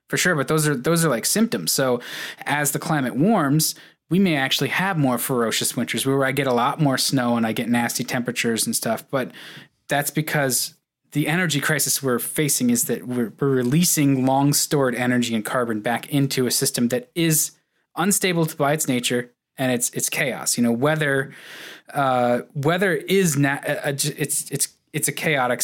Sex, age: male, 20-39